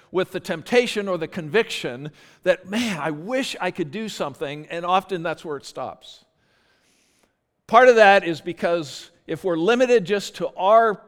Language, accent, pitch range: English, American, 150-195 Hz